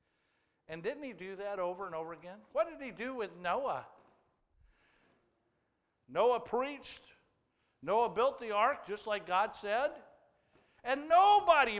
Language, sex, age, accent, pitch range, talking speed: English, male, 50-69, American, 140-185 Hz, 135 wpm